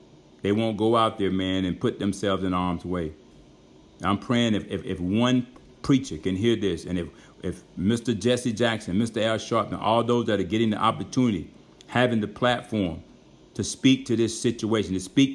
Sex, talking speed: male, 190 wpm